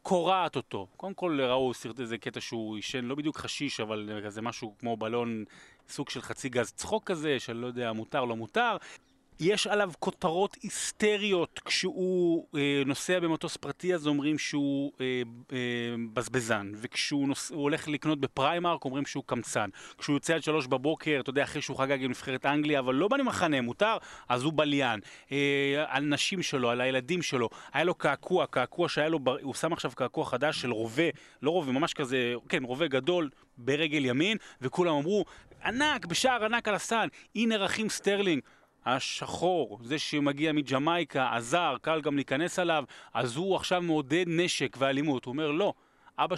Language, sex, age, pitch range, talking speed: Hebrew, male, 30-49, 125-165 Hz, 170 wpm